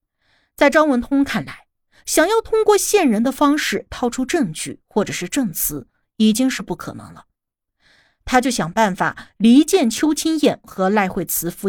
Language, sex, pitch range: Chinese, female, 200-285 Hz